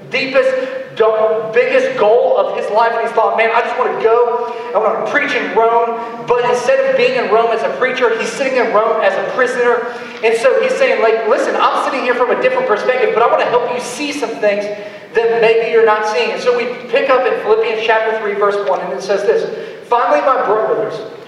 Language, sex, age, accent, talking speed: English, male, 30-49, American, 230 wpm